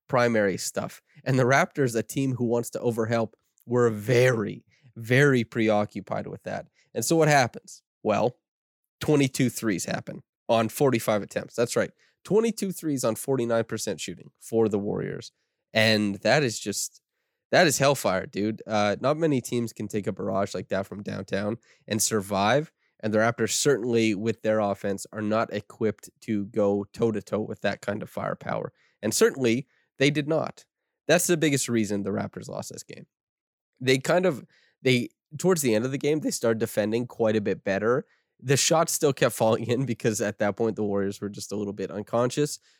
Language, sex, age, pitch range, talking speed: English, male, 20-39, 105-135 Hz, 180 wpm